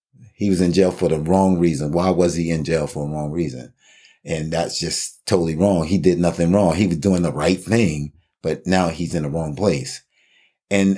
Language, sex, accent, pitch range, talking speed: English, male, American, 80-100 Hz, 220 wpm